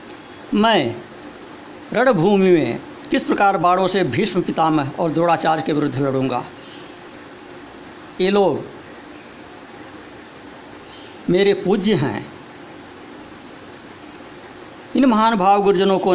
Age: 60-79